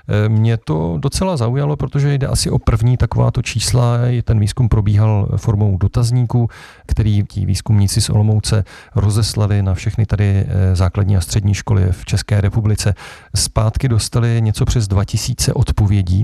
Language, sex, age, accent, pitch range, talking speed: Czech, male, 40-59, native, 95-115 Hz, 140 wpm